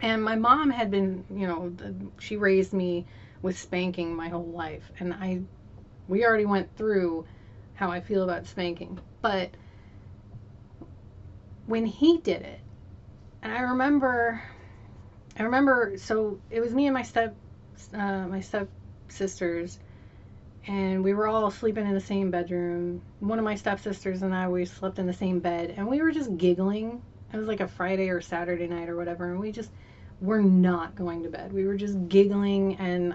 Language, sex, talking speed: English, female, 175 wpm